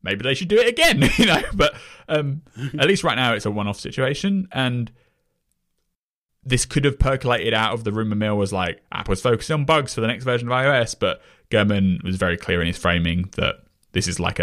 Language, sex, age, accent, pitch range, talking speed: English, male, 20-39, British, 90-130 Hz, 215 wpm